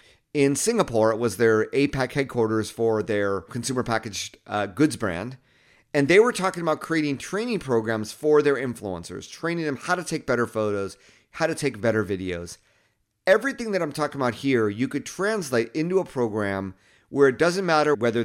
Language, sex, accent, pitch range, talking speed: English, male, American, 105-145 Hz, 180 wpm